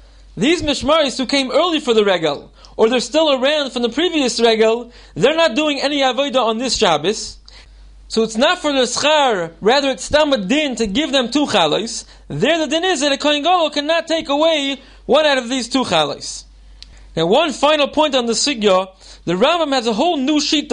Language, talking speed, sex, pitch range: English, 205 wpm, male, 225-295 Hz